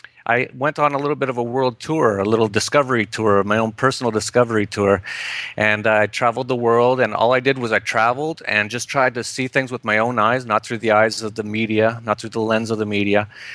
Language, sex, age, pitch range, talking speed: English, male, 30-49, 105-130 Hz, 245 wpm